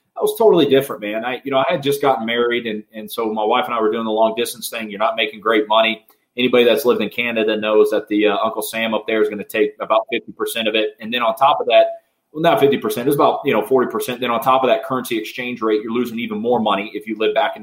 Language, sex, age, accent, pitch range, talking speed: English, male, 30-49, American, 105-135 Hz, 295 wpm